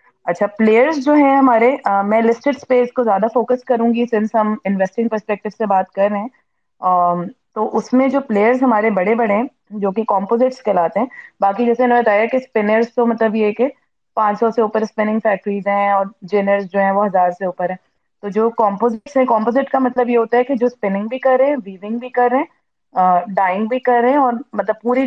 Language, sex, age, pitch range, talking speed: Urdu, female, 20-39, 195-245 Hz, 210 wpm